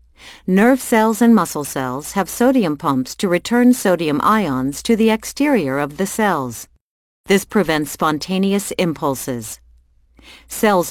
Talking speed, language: 125 wpm, English